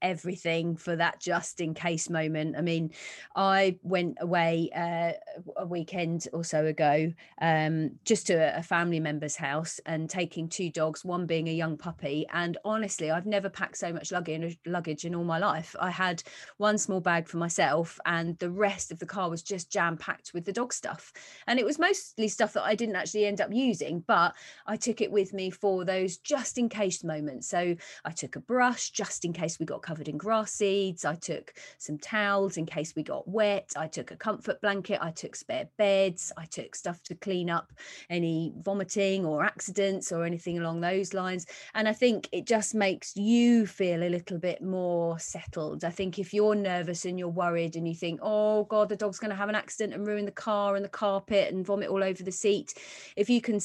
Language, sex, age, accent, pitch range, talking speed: English, female, 30-49, British, 170-210 Hz, 205 wpm